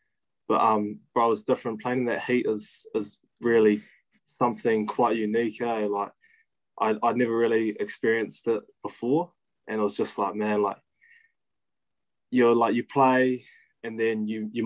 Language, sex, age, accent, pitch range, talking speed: English, male, 20-39, New Zealand, 105-115 Hz, 165 wpm